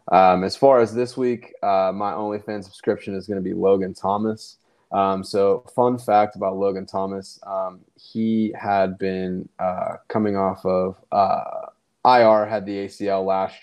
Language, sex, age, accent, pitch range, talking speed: English, male, 20-39, American, 95-110 Hz, 165 wpm